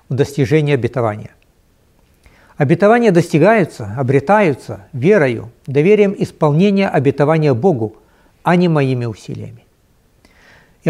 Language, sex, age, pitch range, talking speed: Russian, male, 60-79, 125-180 Hz, 85 wpm